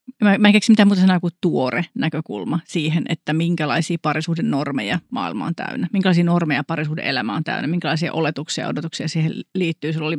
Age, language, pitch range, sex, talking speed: 40-59, Finnish, 160-180 Hz, female, 185 wpm